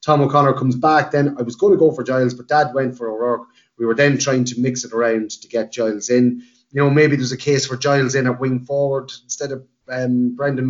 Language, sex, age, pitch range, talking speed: English, male, 30-49, 120-140 Hz, 250 wpm